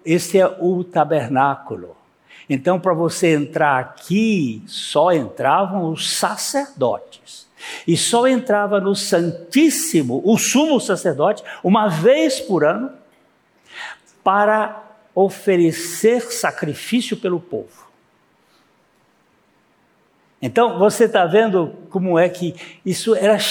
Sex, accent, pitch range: male, Brazilian, 155-210 Hz